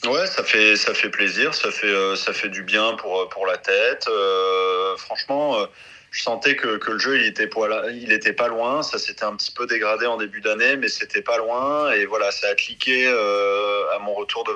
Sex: male